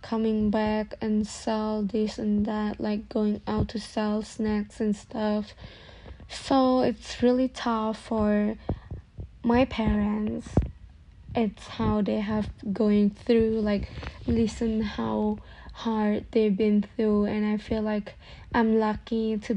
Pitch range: 210-225 Hz